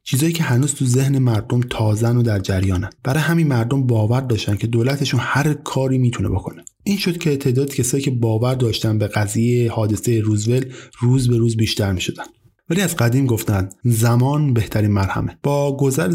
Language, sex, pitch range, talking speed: Persian, male, 110-135 Hz, 175 wpm